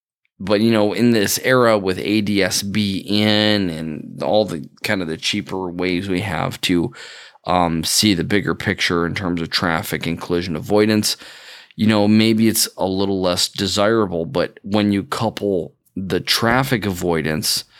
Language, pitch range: English, 90-110 Hz